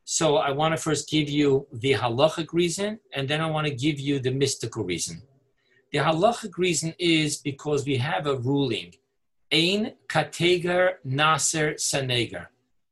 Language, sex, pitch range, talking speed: English, male, 135-165 Hz, 150 wpm